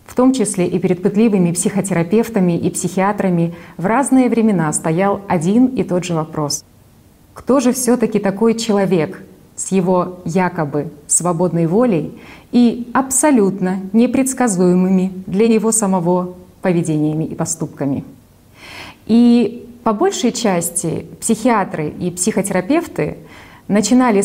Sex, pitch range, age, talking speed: female, 180-235 Hz, 30-49, 115 wpm